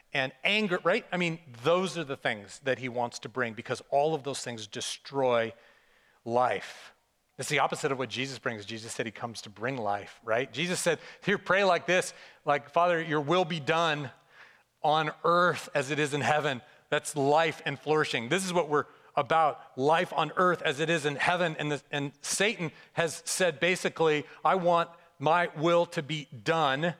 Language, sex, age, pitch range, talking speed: English, male, 40-59, 130-170 Hz, 190 wpm